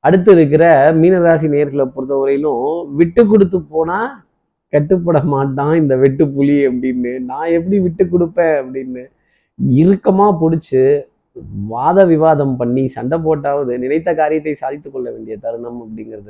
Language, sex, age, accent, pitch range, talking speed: Tamil, male, 20-39, native, 135-170 Hz, 120 wpm